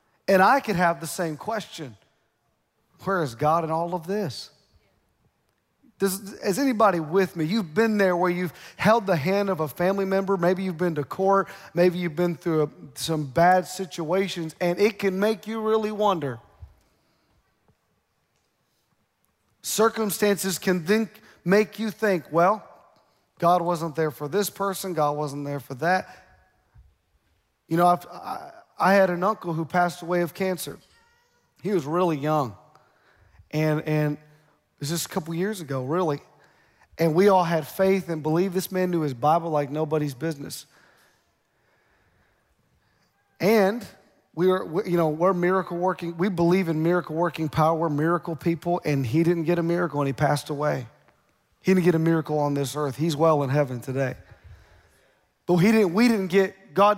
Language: English